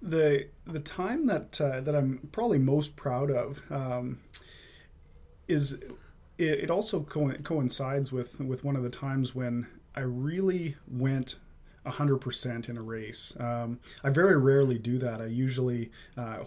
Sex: male